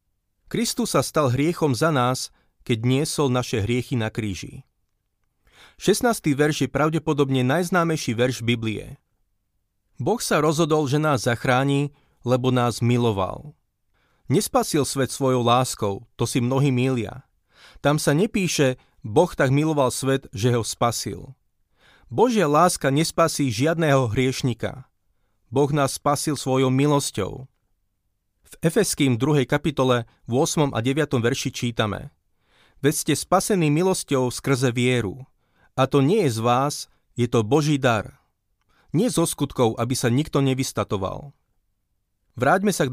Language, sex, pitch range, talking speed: Slovak, male, 120-145 Hz, 130 wpm